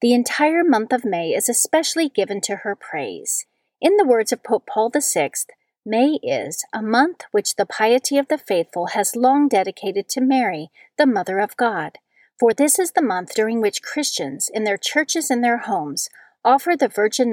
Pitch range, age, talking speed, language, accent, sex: 205-280 Hz, 40-59, 185 wpm, English, American, female